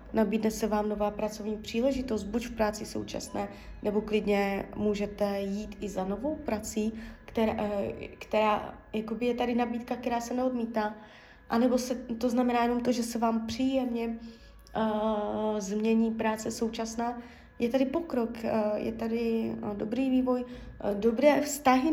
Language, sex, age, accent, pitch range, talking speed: Czech, female, 20-39, native, 215-245 Hz, 135 wpm